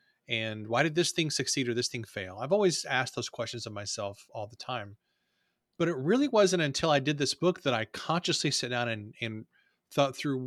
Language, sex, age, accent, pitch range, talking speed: English, male, 30-49, American, 120-150 Hz, 220 wpm